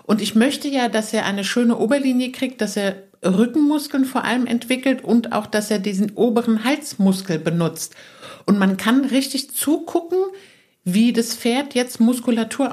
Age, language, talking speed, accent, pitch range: 60-79, German, 160 wpm, German, 195-250 Hz